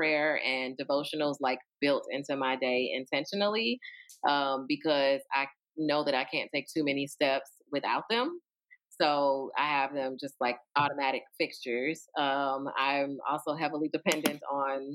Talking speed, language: 145 wpm, English